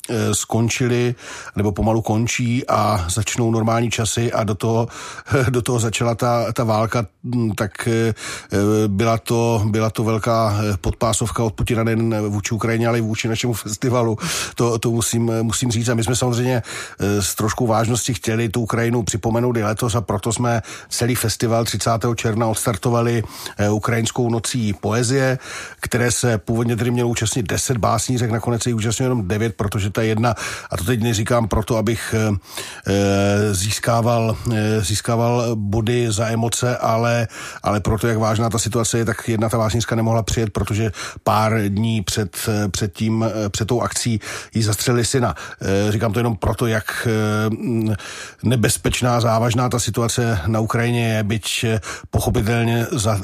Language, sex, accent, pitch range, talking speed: Czech, male, native, 110-120 Hz, 150 wpm